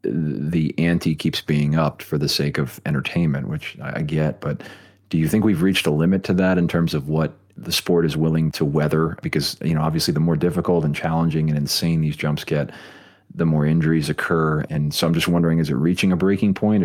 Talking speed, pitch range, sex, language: 220 wpm, 75-85 Hz, male, English